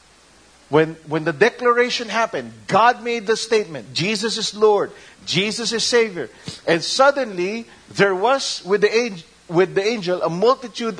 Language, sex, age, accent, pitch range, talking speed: English, male, 50-69, Filipino, 155-225 Hz, 145 wpm